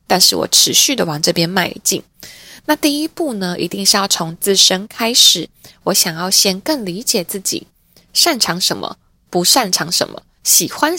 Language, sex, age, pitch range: Chinese, female, 20-39, 170-220 Hz